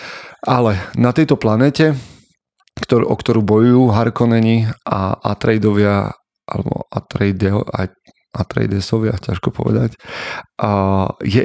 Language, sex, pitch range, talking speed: Slovak, male, 100-120 Hz, 85 wpm